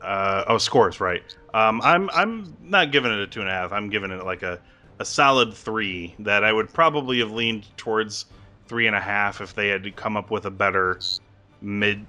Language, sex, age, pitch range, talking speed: English, male, 30-49, 95-110 Hz, 220 wpm